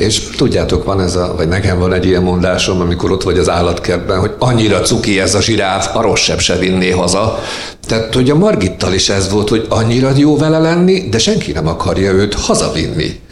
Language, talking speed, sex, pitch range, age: Hungarian, 200 wpm, male, 90-115 Hz, 50-69